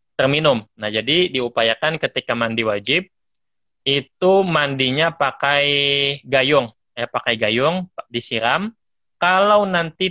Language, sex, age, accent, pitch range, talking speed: Indonesian, male, 20-39, native, 120-150 Hz, 100 wpm